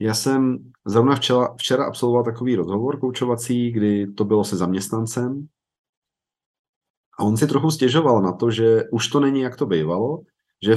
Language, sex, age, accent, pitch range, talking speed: Czech, male, 40-59, native, 105-125 Hz, 160 wpm